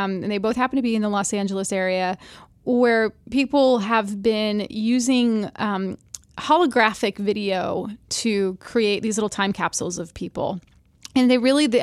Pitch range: 200-230 Hz